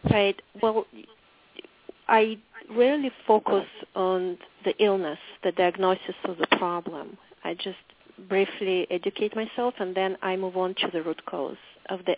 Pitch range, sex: 180-210 Hz, female